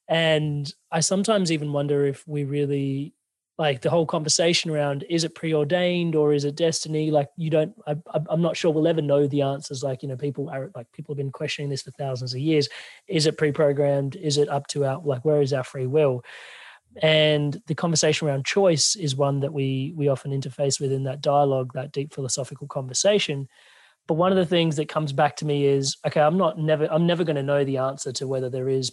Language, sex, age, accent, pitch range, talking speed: English, male, 30-49, Australian, 140-160 Hz, 220 wpm